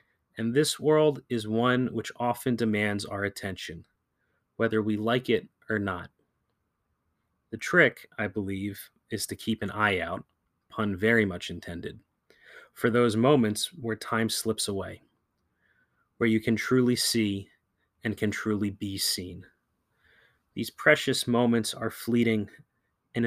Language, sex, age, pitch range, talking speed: English, male, 30-49, 105-120 Hz, 135 wpm